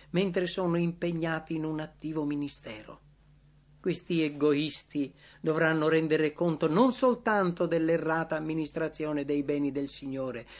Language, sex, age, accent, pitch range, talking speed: English, male, 50-69, Italian, 150-210 Hz, 115 wpm